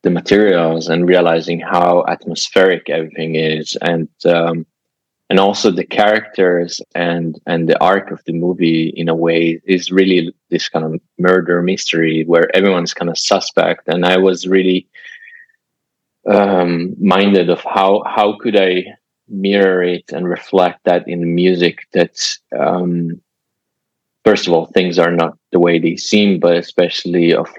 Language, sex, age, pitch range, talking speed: English, male, 20-39, 85-95 Hz, 150 wpm